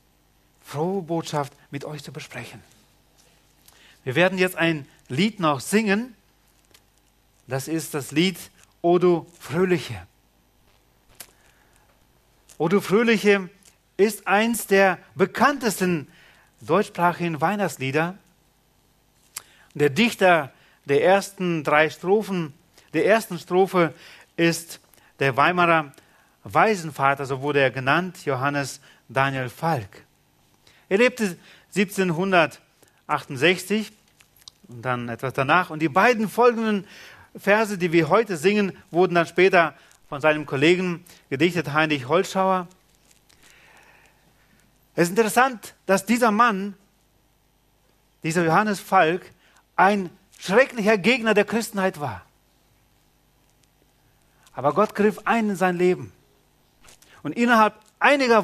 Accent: German